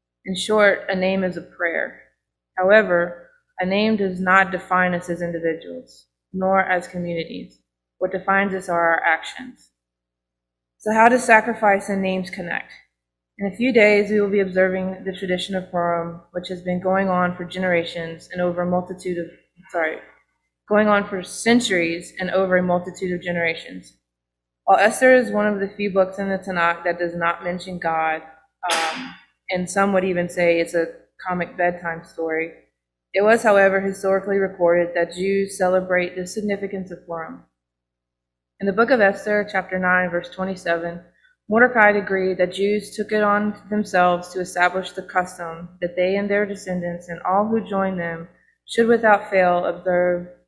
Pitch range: 170-195 Hz